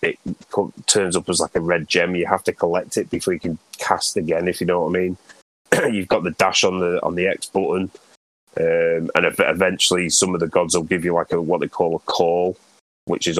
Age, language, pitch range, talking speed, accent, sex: 20-39, English, 80-90 Hz, 235 wpm, British, male